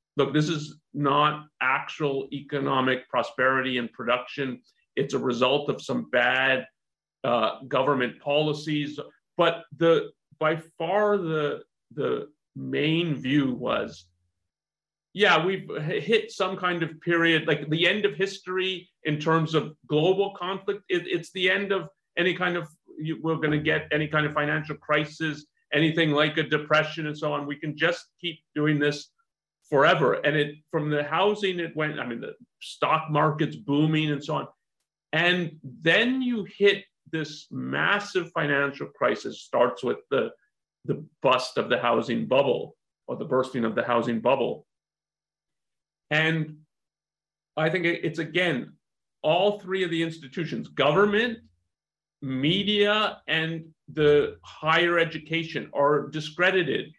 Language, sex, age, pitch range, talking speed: English, male, 40-59, 150-175 Hz, 140 wpm